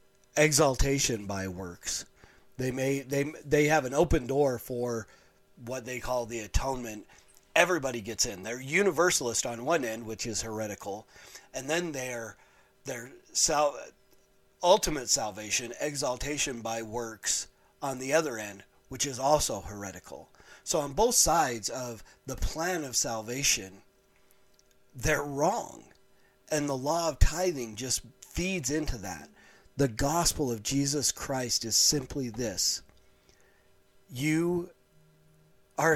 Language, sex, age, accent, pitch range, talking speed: English, male, 40-59, American, 105-145 Hz, 125 wpm